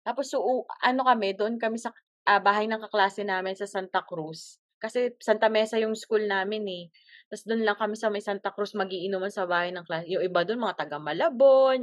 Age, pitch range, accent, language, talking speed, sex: 20-39, 200-255 Hz, native, Filipino, 215 wpm, female